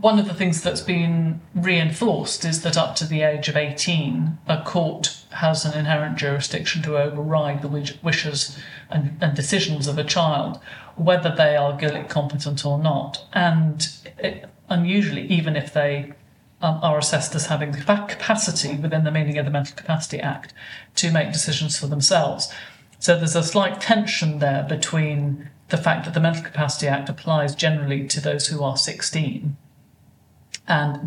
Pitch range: 140-160 Hz